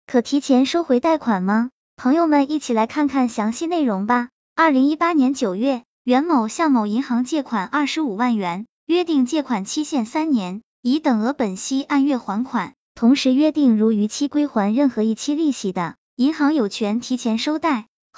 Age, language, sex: 20-39, Chinese, male